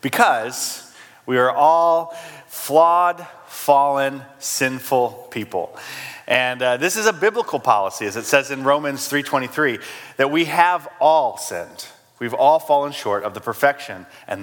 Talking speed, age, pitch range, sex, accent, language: 140 wpm, 30-49, 125-160 Hz, male, American, English